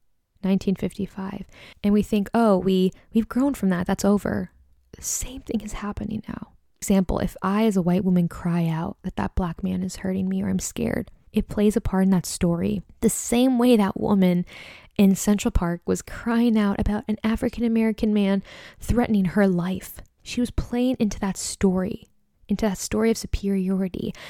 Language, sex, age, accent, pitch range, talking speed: English, female, 10-29, American, 190-225 Hz, 180 wpm